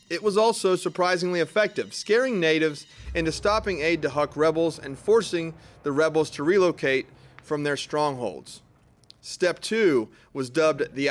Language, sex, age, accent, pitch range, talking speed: English, male, 30-49, American, 145-195 Hz, 145 wpm